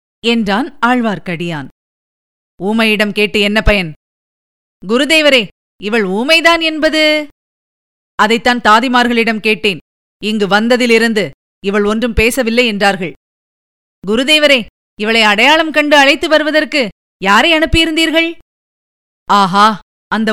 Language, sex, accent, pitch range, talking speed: Tamil, female, native, 210-260 Hz, 85 wpm